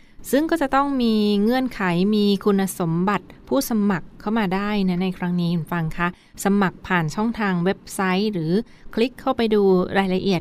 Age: 20-39